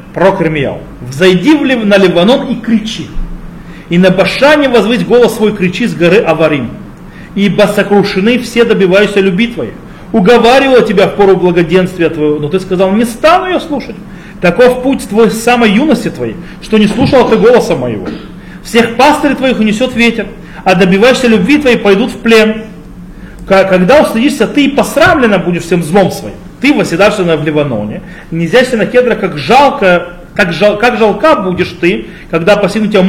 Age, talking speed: 40-59, 155 wpm